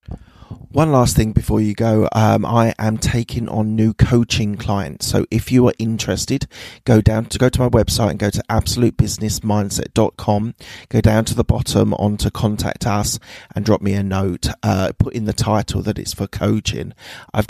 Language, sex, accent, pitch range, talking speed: English, male, British, 100-115 Hz, 185 wpm